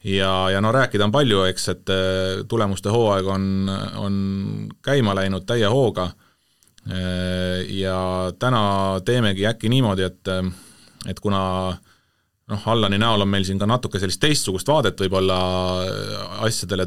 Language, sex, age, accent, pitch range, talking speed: English, male, 30-49, Finnish, 90-105 Hz, 130 wpm